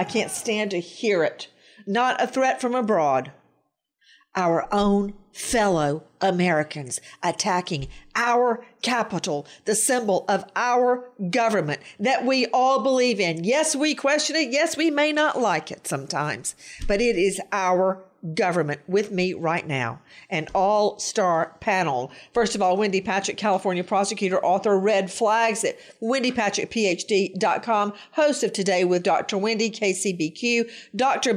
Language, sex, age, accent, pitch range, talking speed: English, female, 50-69, American, 195-250 Hz, 135 wpm